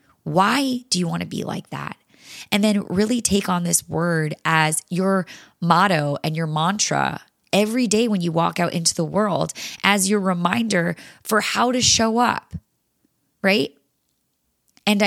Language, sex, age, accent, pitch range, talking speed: English, female, 20-39, American, 175-215 Hz, 160 wpm